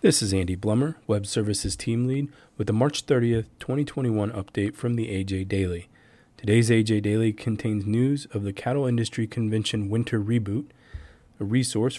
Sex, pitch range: male, 105-125 Hz